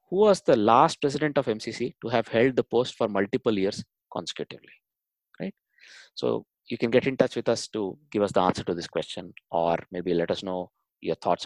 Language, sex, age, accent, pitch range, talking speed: English, male, 20-39, Indian, 95-125 Hz, 210 wpm